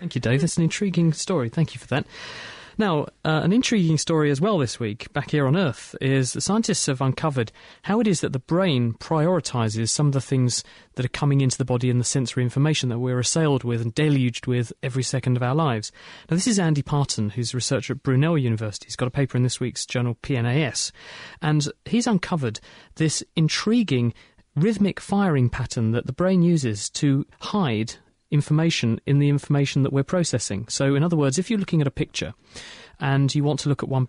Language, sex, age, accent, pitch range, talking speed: English, male, 30-49, British, 125-155 Hz, 210 wpm